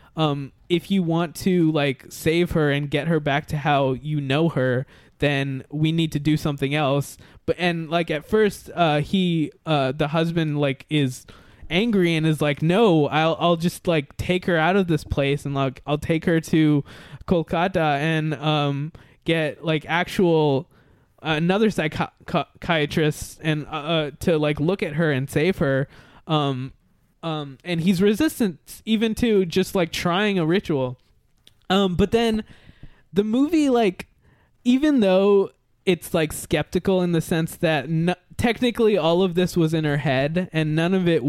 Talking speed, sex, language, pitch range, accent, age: 165 wpm, male, English, 145-180 Hz, American, 20-39